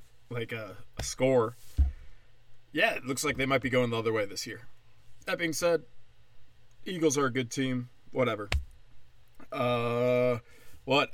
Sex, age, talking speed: male, 20-39, 150 wpm